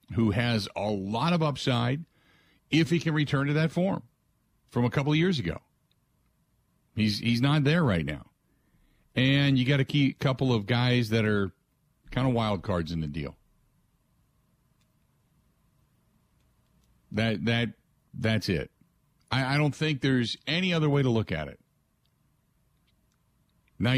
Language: English